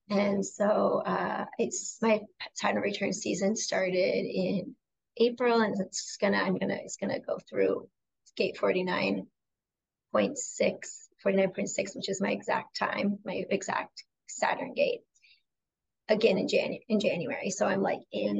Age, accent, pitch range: 30-49, American, 195-230 Hz